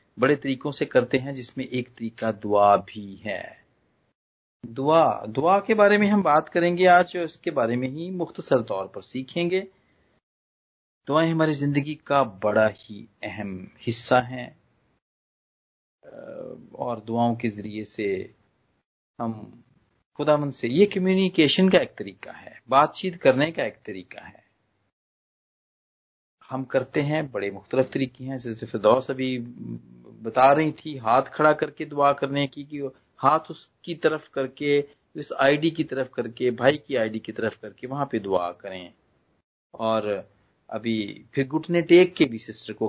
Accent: native